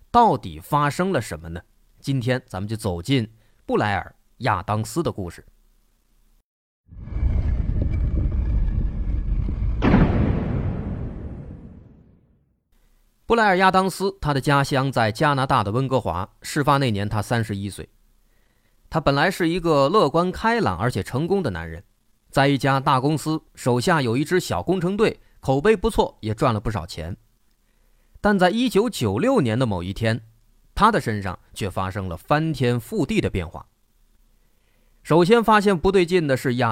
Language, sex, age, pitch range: Chinese, male, 30-49, 100-165 Hz